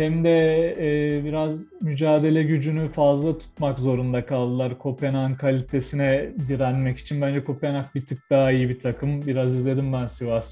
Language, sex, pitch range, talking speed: Turkish, male, 135-160 Hz, 150 wpm